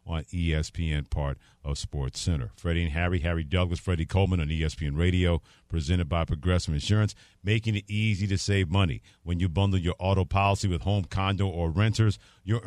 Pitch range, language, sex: 90-130 Hz, English, male